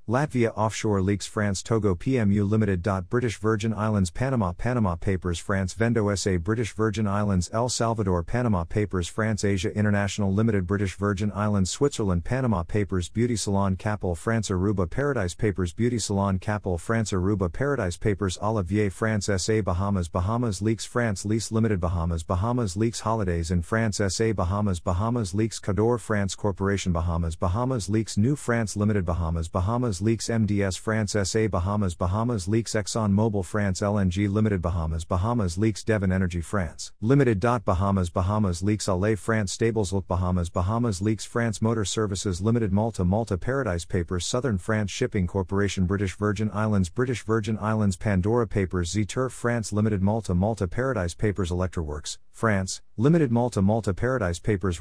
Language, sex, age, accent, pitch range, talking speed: English, male, 50-69, American, 95-110 Hz, 155 wpm